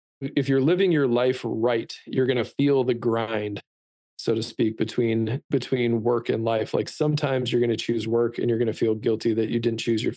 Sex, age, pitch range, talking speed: male, 20-39, 110-125 Hz, 225 wpm